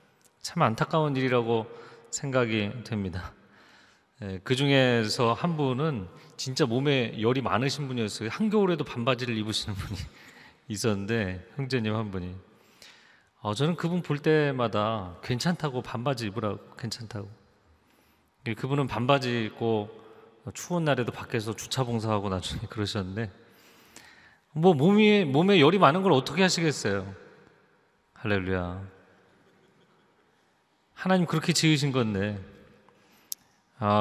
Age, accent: 40-59, native